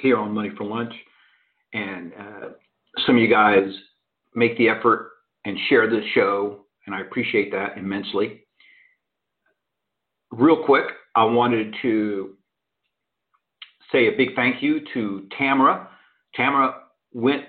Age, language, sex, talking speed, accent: 50-69, English, male, 125 wpm, American